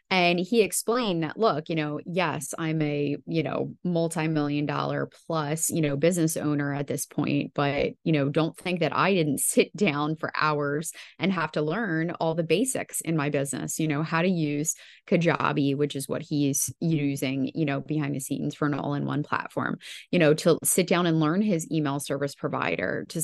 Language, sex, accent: English, female, American